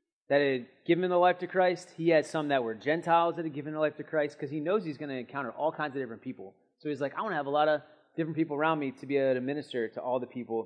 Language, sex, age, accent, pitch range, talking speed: English, male, 30-49, American, 140-180 Hz, 310 wpm